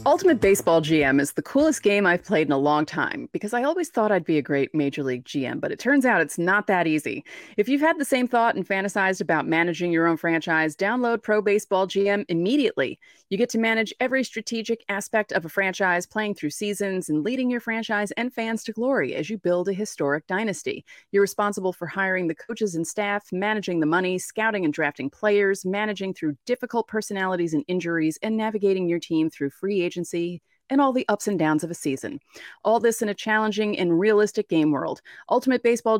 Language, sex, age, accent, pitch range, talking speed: English, female, 30-49, American, 175-230 Hz, 210 wpm